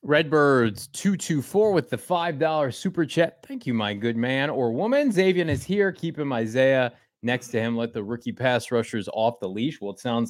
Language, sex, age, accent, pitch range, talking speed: English, male, 20-39, American, 110-140 Hz, 210 wpm